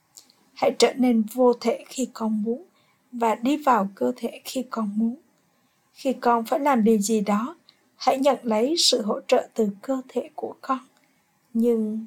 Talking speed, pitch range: 175 wpm, 225-265 Hz